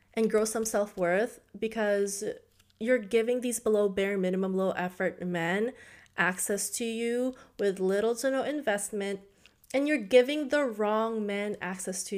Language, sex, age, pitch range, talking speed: English, female, 20-39, 185-235 Hz, 150 wpm